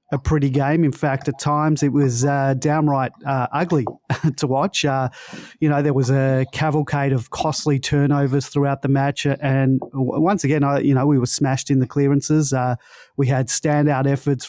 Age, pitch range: 30-49, 130-150 Hz